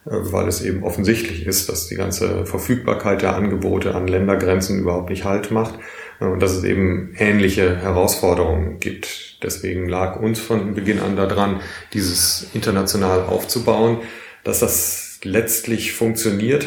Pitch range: 95-115 Hz